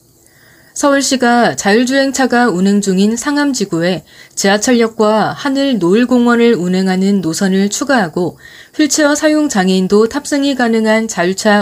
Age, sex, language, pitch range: 20-39, female, Korean, 185-255 Hz